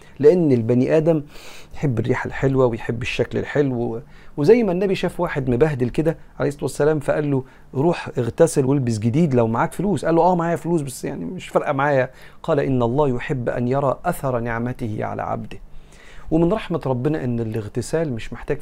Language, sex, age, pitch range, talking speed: Arabic, male, 40-59, 120-150 Hz, 175 wpm